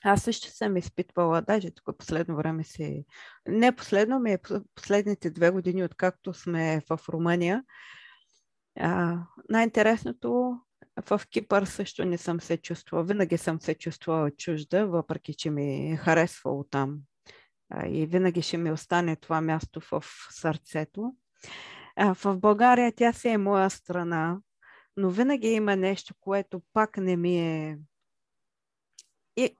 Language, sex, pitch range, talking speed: Bulgarian, female, 165-210 Hz, 140 wpm